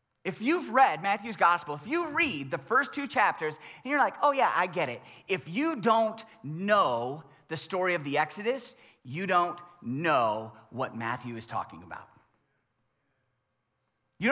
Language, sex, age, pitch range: English, male, 30-49, 200-320 Hz